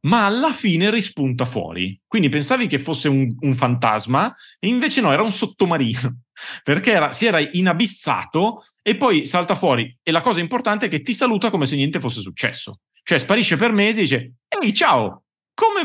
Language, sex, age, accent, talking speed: Italian, male, 30-49, native, 185 wpm